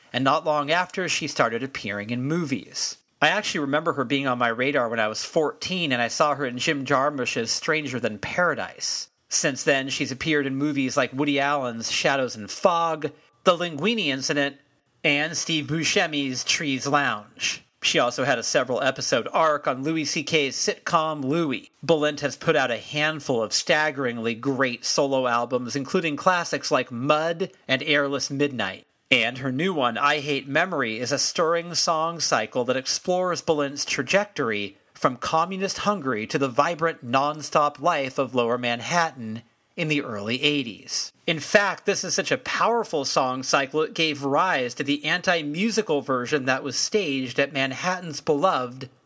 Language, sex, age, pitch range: English, male, 40-59, 130-160 Hz